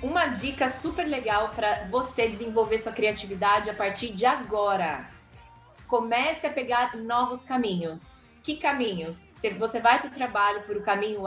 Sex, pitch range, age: female, 205-255 Hz, 20-39